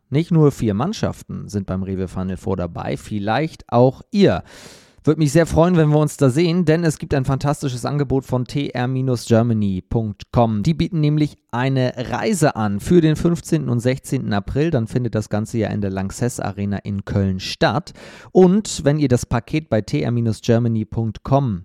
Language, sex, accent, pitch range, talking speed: German, male, German, 110-155 Hz, 170 wpm